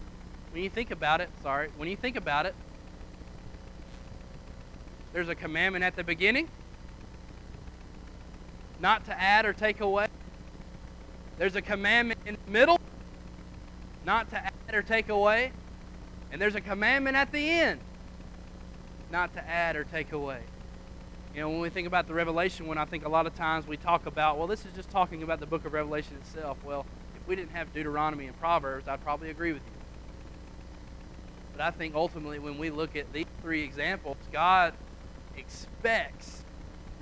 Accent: American